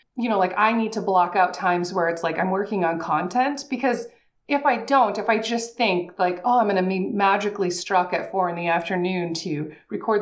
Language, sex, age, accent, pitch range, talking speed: English, female, 30-49, American, 175-225 Hz, 230 wpm